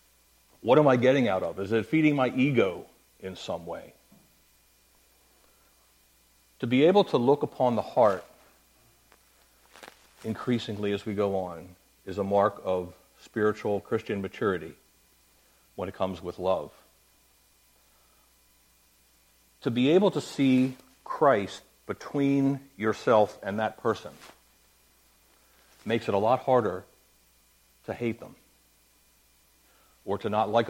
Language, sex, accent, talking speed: English, male, American, 120 wpm